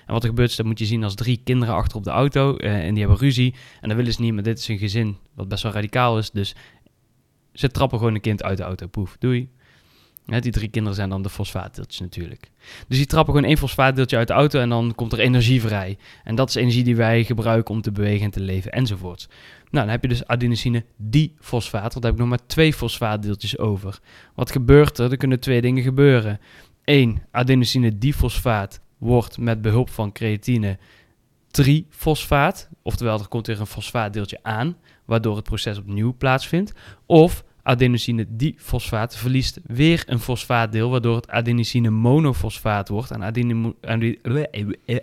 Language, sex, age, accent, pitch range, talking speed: Dutch, male, 20-39, Dutch, 110-130 Hz, 190 wpm